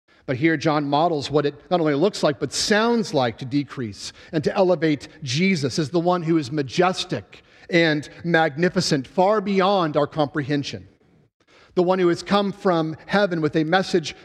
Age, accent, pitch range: 50-69, American, 145-200 Hz